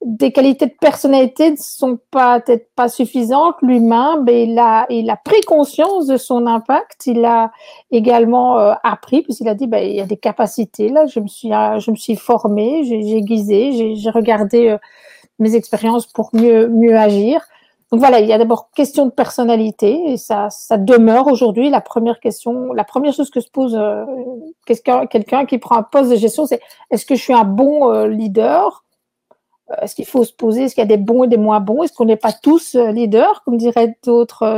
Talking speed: 210 wpm